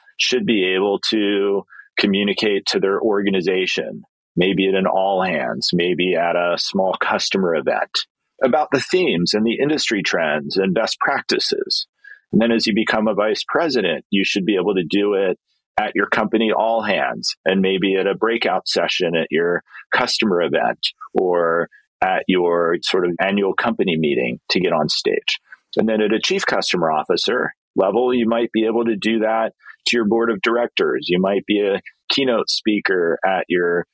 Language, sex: English, male